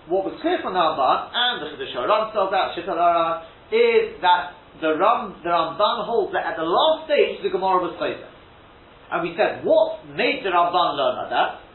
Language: English